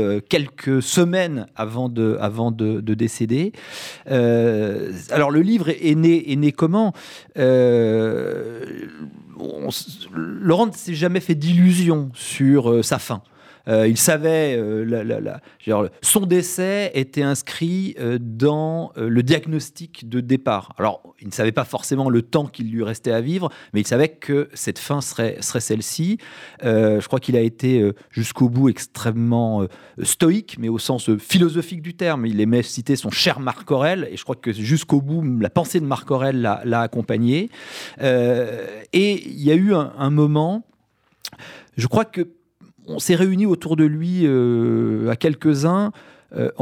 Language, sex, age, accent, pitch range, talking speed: French, male, 40-59, French, 120-170 Hz, 165 wpm